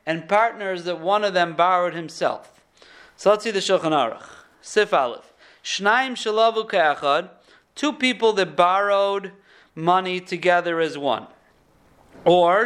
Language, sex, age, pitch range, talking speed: English, male, 40-59, 170-225 Hz, 130 wpm